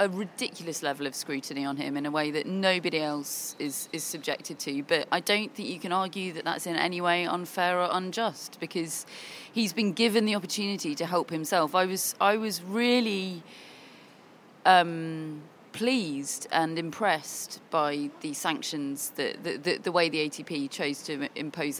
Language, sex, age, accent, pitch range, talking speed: English, female, 30-49, British, 160-210 Hz, 175 wpm